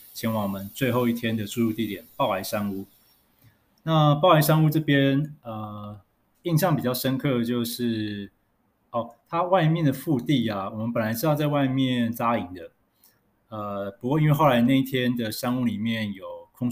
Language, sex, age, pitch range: Chinese, male, 20-39, 105-130 Hz